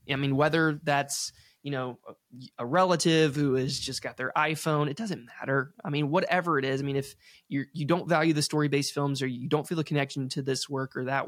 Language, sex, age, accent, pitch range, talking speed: English, male, 20-39, American, 130-155 Hz, 235 wpm